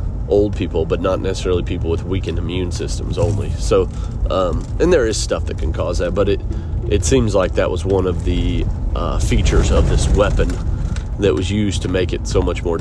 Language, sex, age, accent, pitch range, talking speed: English, male, 30-49, American, 85-100 Hz, 210 wpm